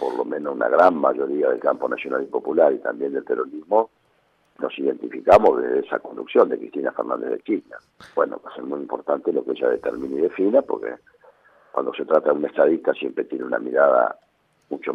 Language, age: Spanish, 50-69